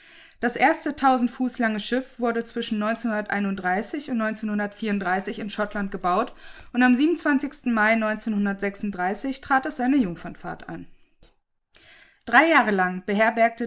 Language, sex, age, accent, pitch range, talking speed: German, female, 20-39, German, 205-250 Hz, 125 wpm